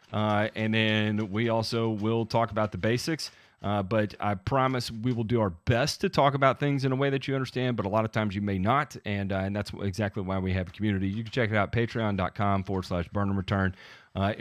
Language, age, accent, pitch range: English, 30-49, American, 95-120 Hz